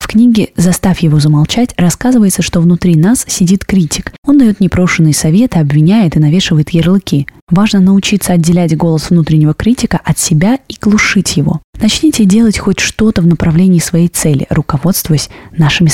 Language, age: Russian, 20-39